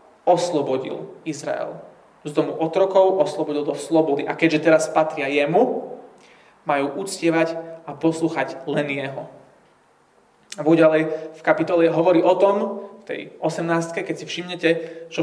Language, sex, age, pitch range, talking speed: Slovak, male, 20-39, 150-180 Hz, 125 wpm